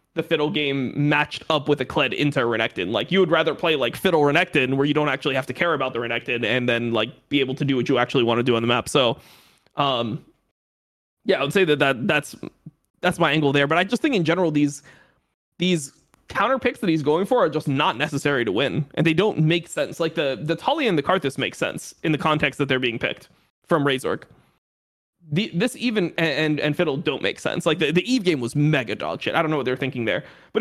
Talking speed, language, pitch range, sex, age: 250 wpm, English, 135-180 Hz, male, 20-39